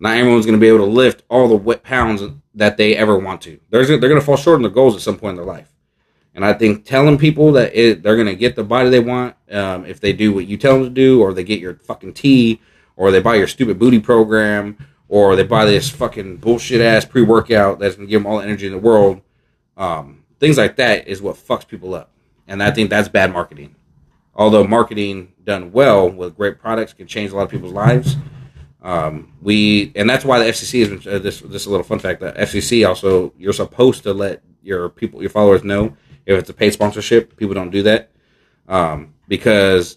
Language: English